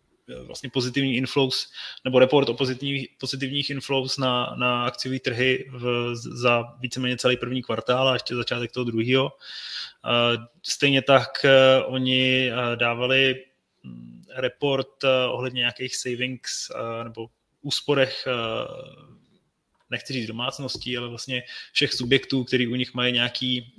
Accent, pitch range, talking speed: native, 120-135 Hz, 130 wpm